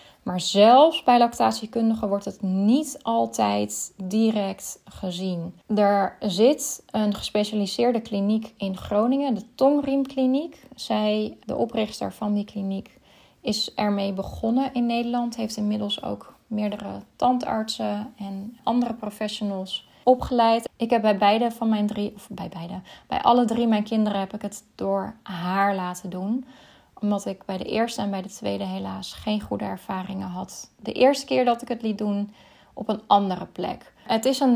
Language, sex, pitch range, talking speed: Dutch, female, 200-240 Hz, 155 wpm